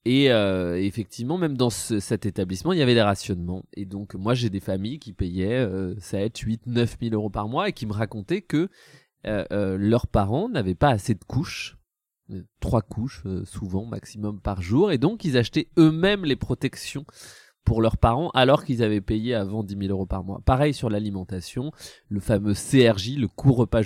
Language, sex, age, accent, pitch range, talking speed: French, male, 20-39, French, 100-130 Hz, 200 wpm